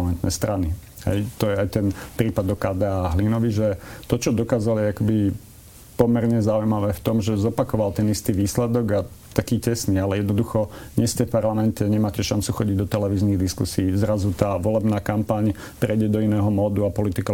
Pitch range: 95-110 Hz